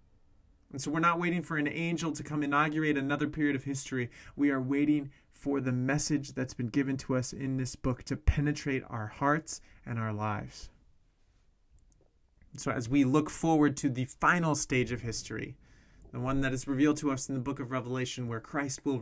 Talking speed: 195 wpm